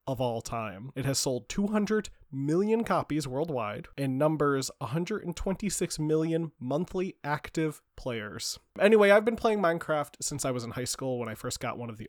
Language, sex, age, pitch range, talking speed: English, male, 20-39, 115-155 Hz, 175 wpm